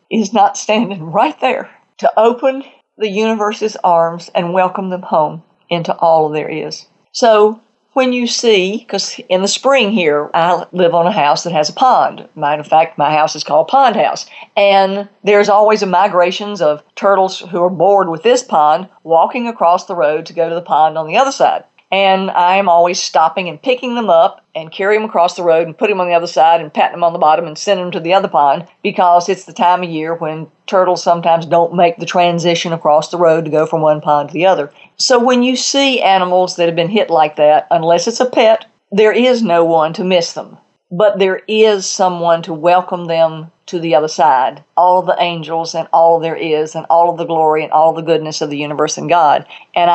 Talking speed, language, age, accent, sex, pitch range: 220 wpm, English, 50-69, American, female, 165-200 Hz